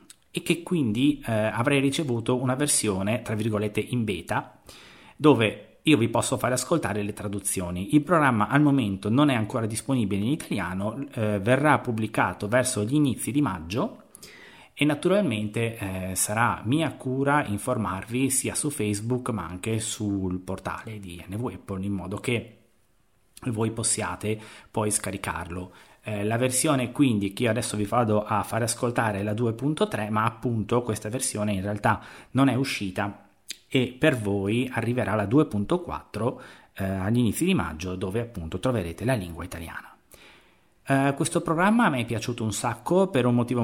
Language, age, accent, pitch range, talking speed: Italian, 30-49, native, 105-135 Hz, 155 wpm